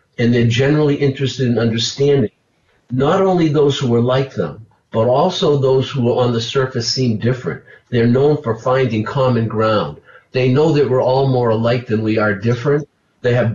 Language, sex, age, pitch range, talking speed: English, male, 50-69, 120-140 Hz, 185 wpm